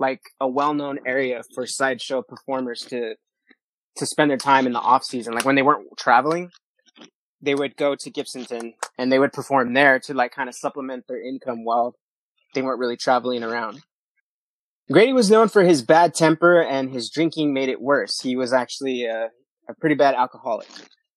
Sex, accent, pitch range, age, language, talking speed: male, American, 130-165 Hz, 20-39, English, 185 wpm